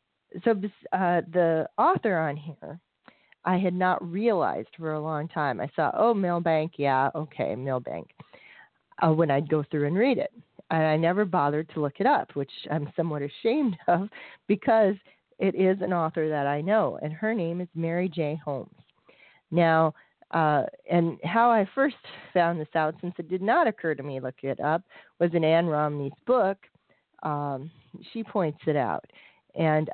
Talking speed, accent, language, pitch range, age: 175 wpm, American, English, 150-185 Hz, 40-59